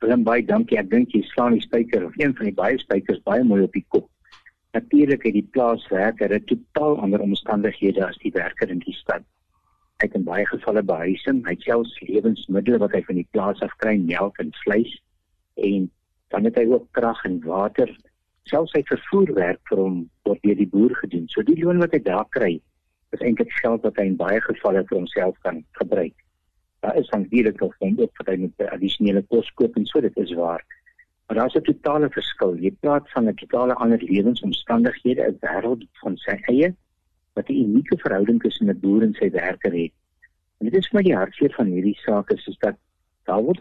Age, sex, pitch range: 60-79, male, 95-145 Hz